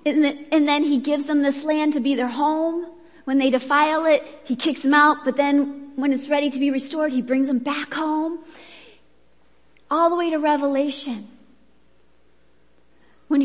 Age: 40-59